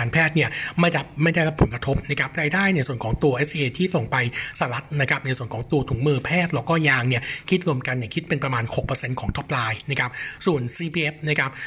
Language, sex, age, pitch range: Thai, male, 60-79, 130-155 Hz